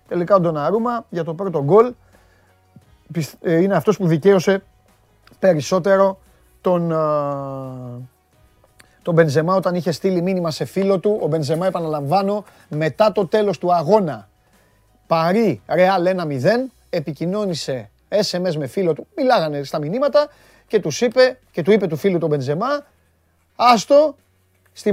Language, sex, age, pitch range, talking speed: Greek, male, 30-49, 160-215 Hz, 130 wpm